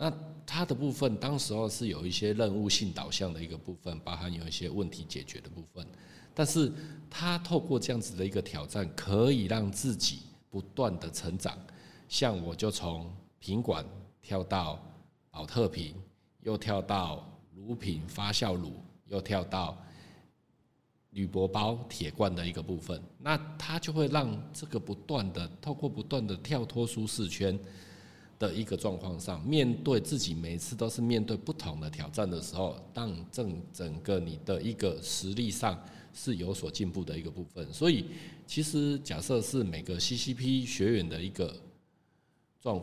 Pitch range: 90-125 Hz